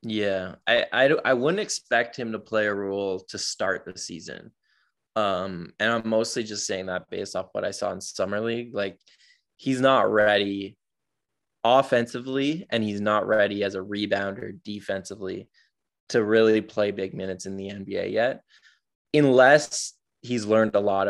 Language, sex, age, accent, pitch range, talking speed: English, male, 20-39, American, 100-115 Hz, 160 wpm